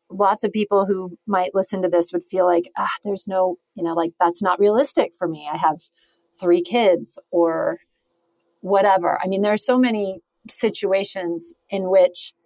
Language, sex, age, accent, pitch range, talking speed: English, female, 30-49, American, 175-205 Hz, 180 wpm